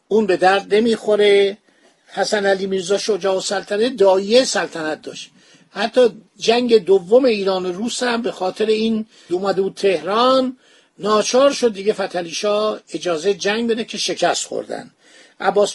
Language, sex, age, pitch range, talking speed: Persian, male, 50-69, 190-230 Hz, 140 wpm